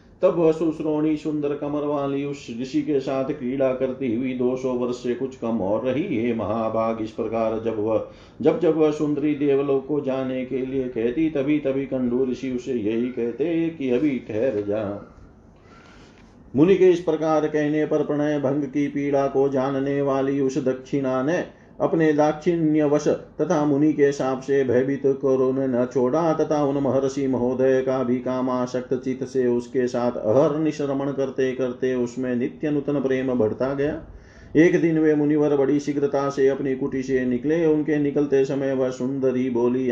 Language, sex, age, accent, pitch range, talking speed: Hindi, male, 40-59, native, 130-145 Hz, 170 wpm